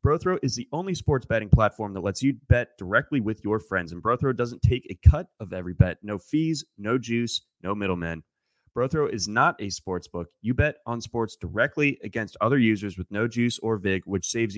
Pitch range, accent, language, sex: 100-125 Hz, American, English, male